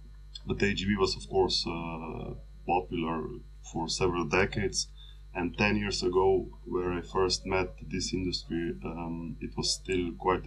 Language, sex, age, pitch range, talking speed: English, male, 20-39, 85-100 Hz, 145 wpm